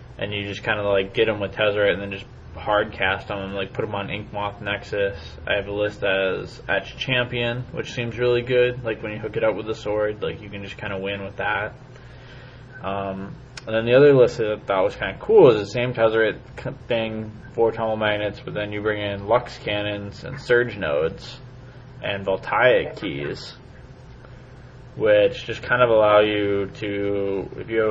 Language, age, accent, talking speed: English, 20-39, American, 210 wpm